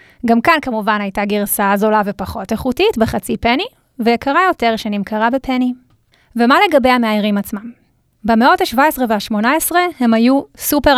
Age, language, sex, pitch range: 20-39, Hebrew, female, 215-265 Hz